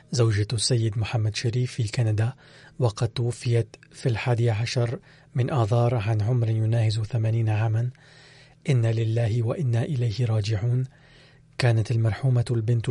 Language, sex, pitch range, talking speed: Arabic, male, 115-135 Hz, 120 wpm